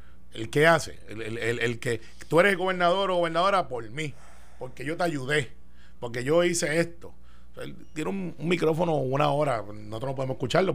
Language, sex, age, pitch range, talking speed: Spanish, male, 30-49, 110-160 Hz, 190 wpm